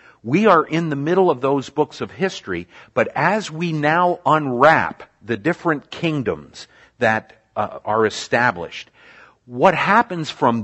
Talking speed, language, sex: 140 wpm, Italian, male